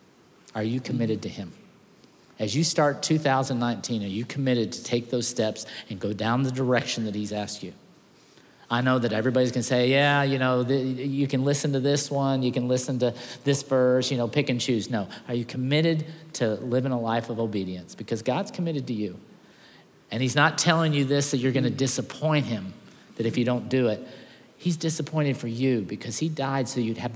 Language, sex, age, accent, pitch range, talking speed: English, male, 50-69, American, 110-130 Hz, 205 wpm